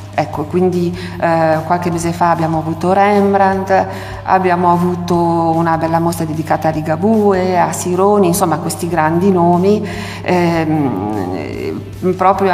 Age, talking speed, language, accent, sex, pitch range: 50-69, 120 wpm, Italian, native, female, 160-185 Hz